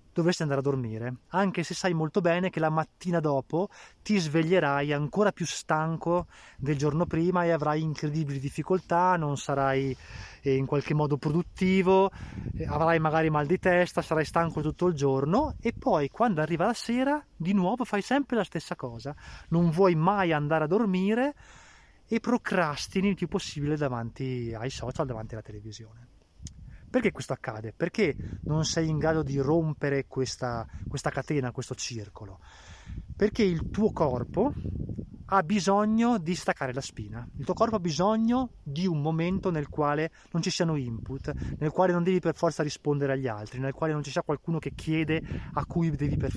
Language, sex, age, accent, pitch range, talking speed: Italian, male, 20-39, native, 140-185 Hz, 170 wpm